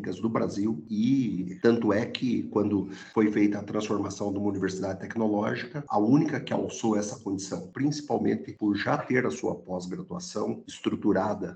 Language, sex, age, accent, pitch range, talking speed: Portuguese, male, 50-69, Brazilian, 105-135 Hz, 150 wpm